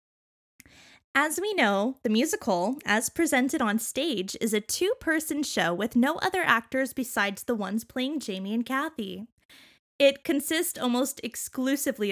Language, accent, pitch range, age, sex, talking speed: English, American, 205-275 Hz, 20-39, female, 140 wpm